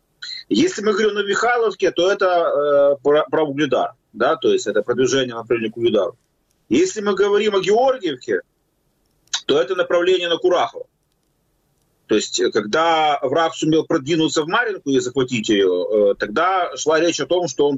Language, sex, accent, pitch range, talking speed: Ukrainian, male, native, 135-220 Hz, 160 wpm